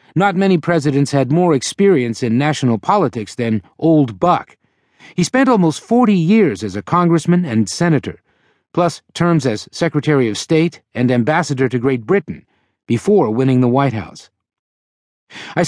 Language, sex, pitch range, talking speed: English, male, 115-170 Hz, 150 wpm